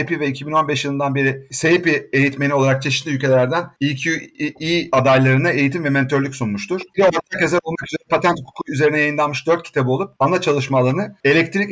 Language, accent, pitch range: Turkish, native, 130-160 Hz